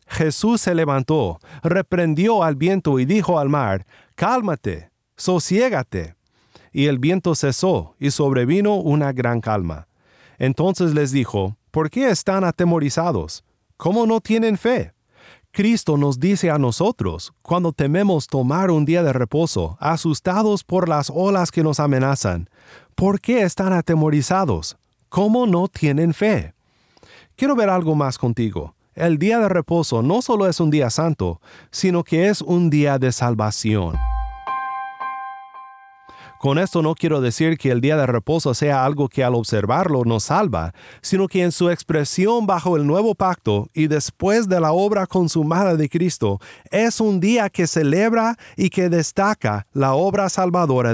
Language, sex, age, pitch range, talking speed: Spanish, male, 40-59, 130-190 Hz, 150 wpm